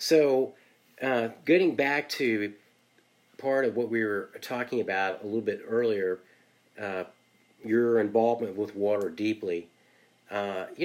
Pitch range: 105-125 Hz